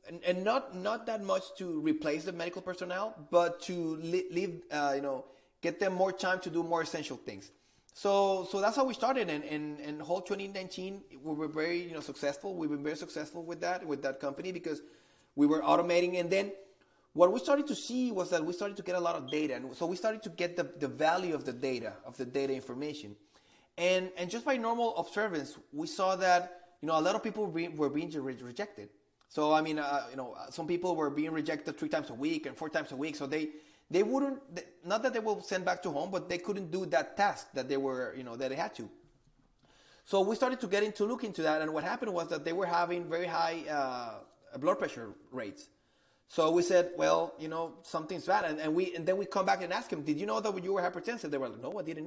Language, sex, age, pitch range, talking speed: English, male, 30-49, 150-195 Hz, 245 wpm